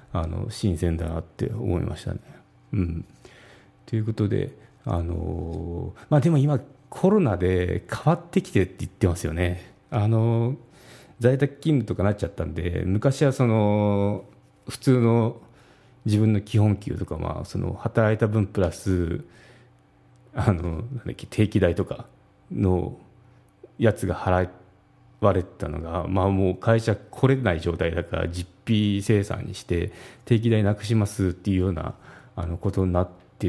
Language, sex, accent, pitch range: Japanese, male, native, 90-120 Hz